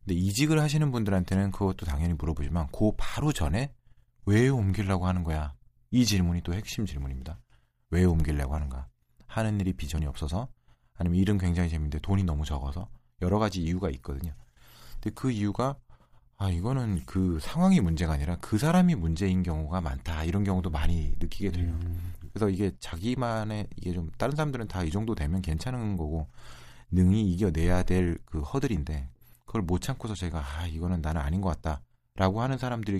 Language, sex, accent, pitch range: Korean, male, native, 80-110 Hz